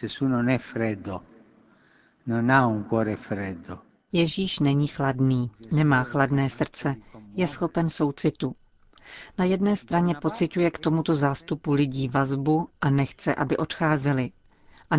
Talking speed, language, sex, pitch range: 90 wpm, Czech, female, 140-165 Hz